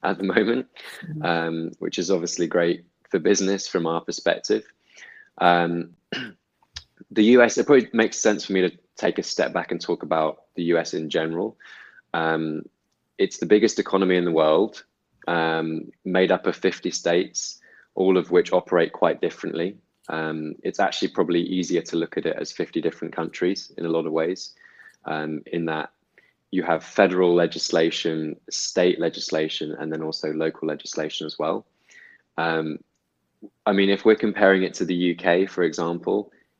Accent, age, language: British, 20-39, English